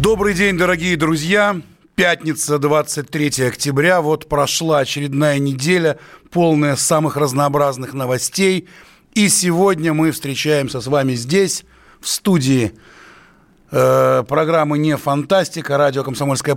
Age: 30-49